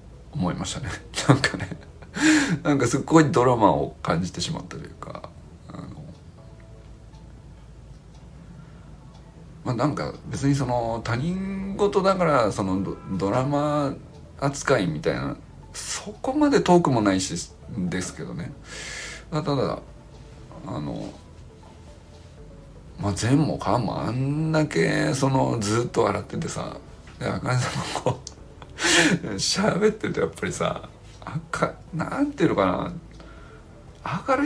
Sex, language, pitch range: male, Japanese, 90-145 Hz